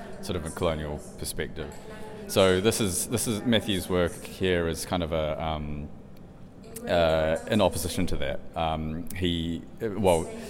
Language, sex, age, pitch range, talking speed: English, male, 30-49, 75-95 Hz, 150 wpm